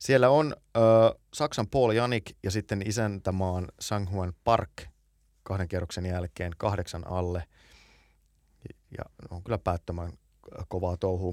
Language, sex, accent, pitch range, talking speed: Finnish, male, native, 90-110 Hz, 115 wpm